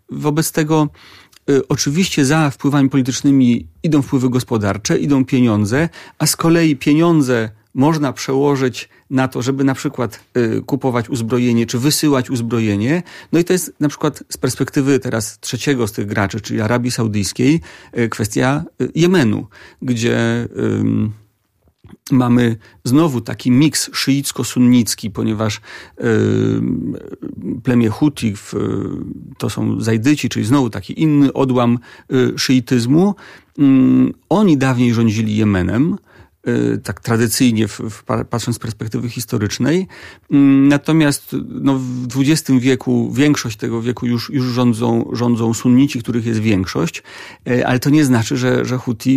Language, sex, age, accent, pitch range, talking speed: Polish, male, 40-59, native, 115-140 Hz, 120 wpm